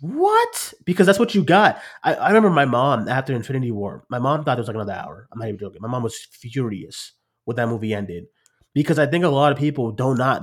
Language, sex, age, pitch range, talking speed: English, male, 30-49, 115-155 Hz, 240 wpm